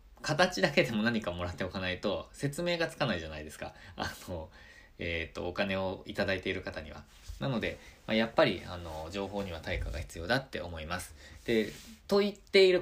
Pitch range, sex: 90-145 Hz, male